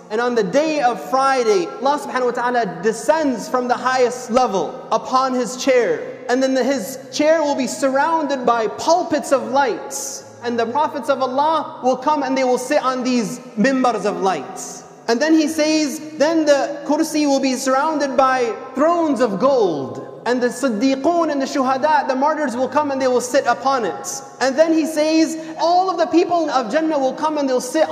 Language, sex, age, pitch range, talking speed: English, male, 30-49, 180-275 Hz, 195 wpm